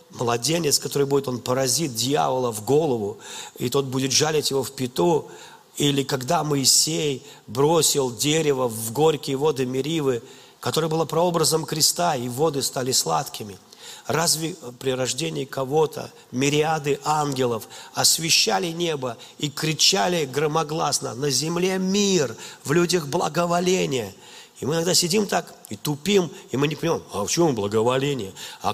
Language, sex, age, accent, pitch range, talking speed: Russian, male, 40-59, native, 135-165 Hz, 135 wpm